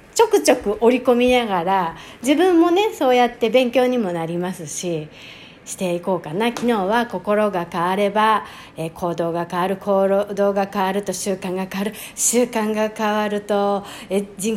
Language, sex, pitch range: Japanese, female, 185-250 Hz